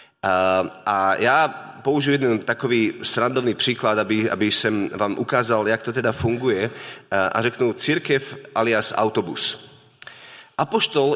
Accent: native